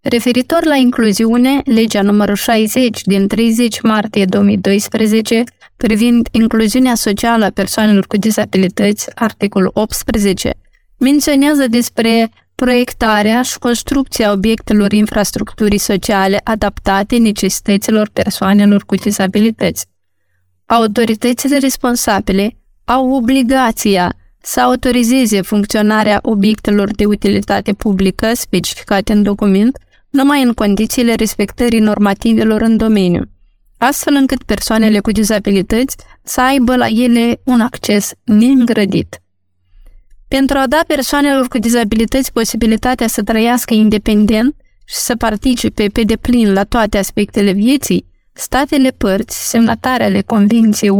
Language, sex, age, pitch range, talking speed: Romanian, female, 20-39, 205-245 Hz, 105 wpm